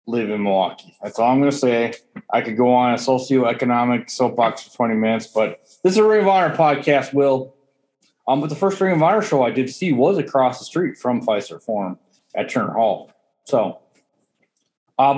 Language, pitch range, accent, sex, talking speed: English, 125-150 Hz, American, male, 200 wpm